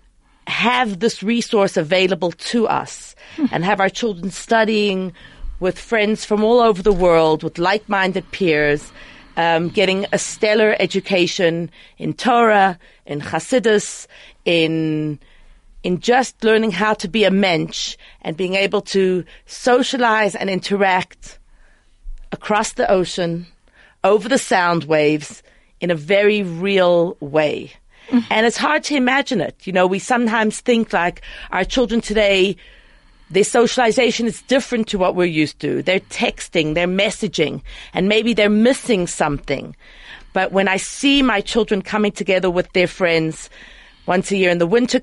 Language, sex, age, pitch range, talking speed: English, female, 40-59, 175-220 Hz, 145 wpm